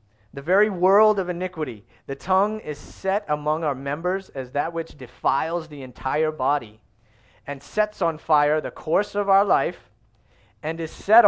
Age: 30-49